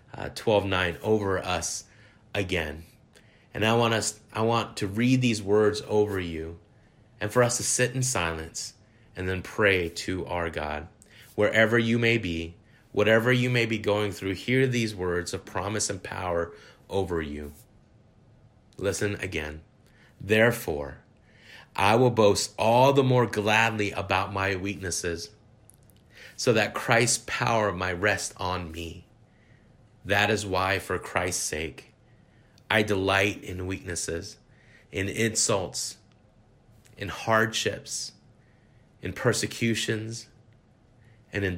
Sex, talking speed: male, 130 wpm